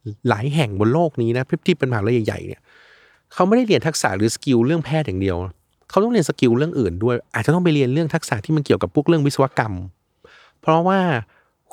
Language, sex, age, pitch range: Thai, male, 20-39, 115-155 Hz